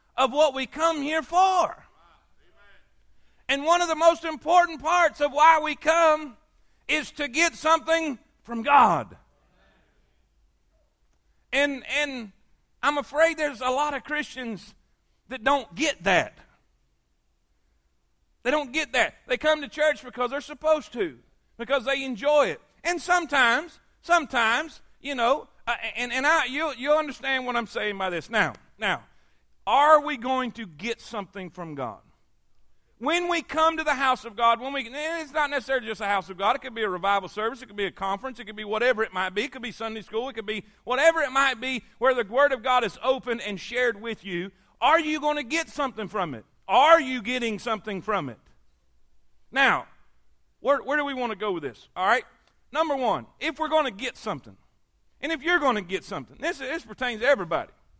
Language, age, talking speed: English, 40-59, 190 wpm